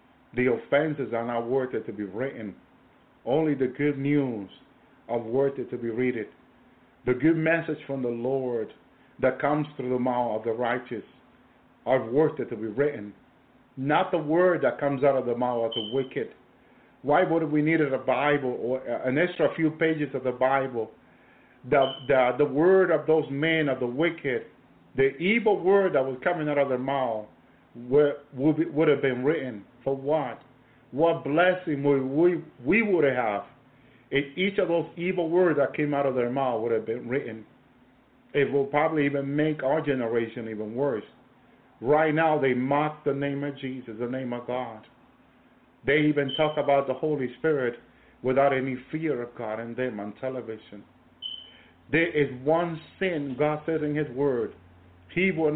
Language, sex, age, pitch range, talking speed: English, male, 50-69, 120-150 Hz, 180 wpm